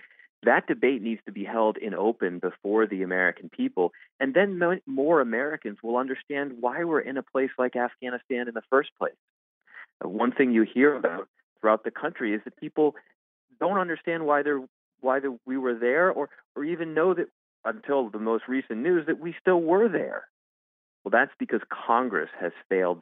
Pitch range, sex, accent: 95-140 Hz, male, American